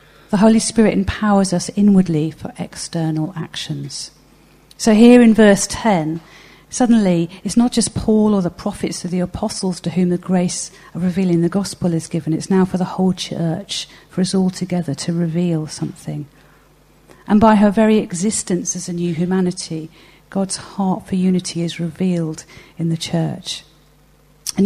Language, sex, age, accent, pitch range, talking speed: English, female, 50-69, British, 165-195 Hz, 165 wpm